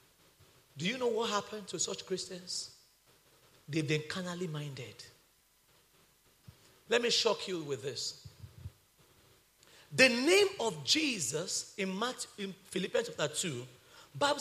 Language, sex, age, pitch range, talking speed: English, male, 40-59, 160-250 Hz, 110 wpm